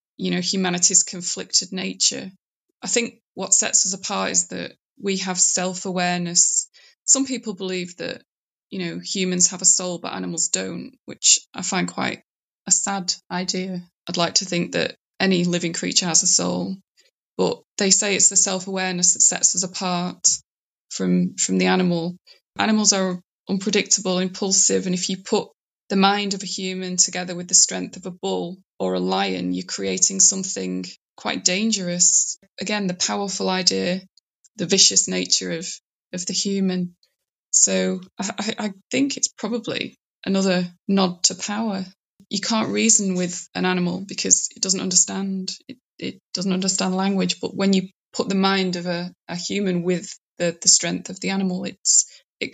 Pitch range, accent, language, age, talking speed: 175-195 Hz, British, English, 20-39, 165 wpm